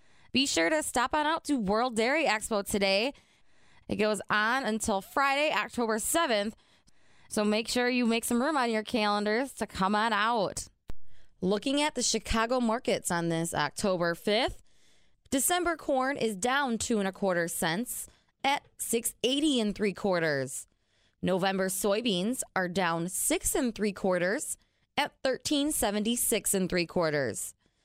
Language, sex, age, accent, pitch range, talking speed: English, female, 20-39, American, 190-265 Hz, 155 wpm